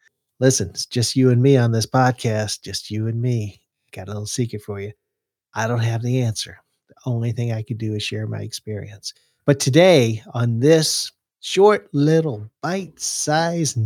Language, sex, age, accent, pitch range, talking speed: English, male, 50-69, American, 105-145 Hz, 180 wpm